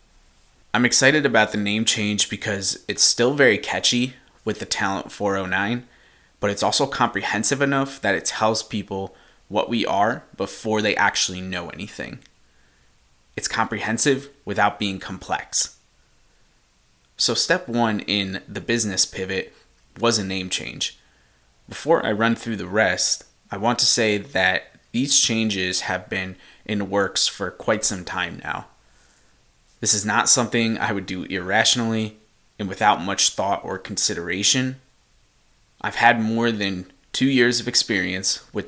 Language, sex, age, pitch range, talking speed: English, male, 20-39, 95-115 Hz, 145 wpm